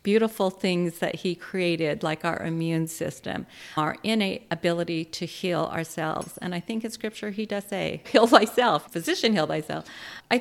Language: English